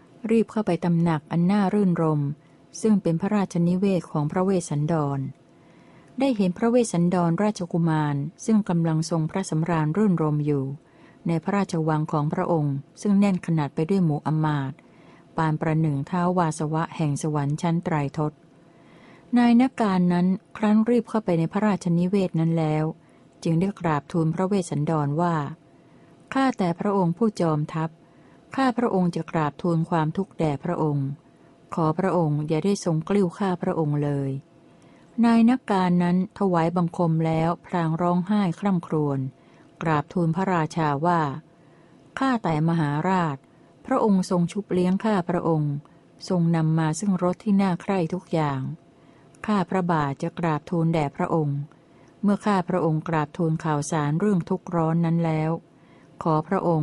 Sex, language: female, Thai